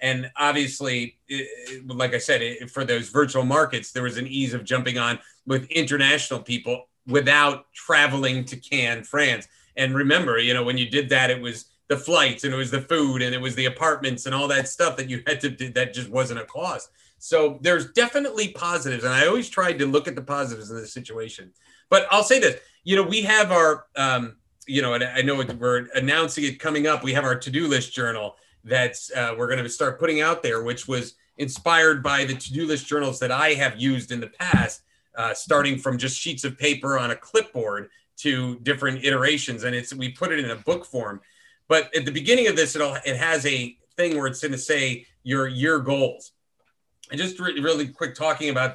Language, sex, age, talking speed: English, male, 40-59, 215 wpm